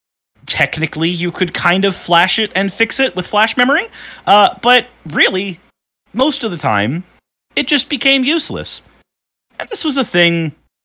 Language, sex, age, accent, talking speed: English, male, 30-49, American, 160 wpm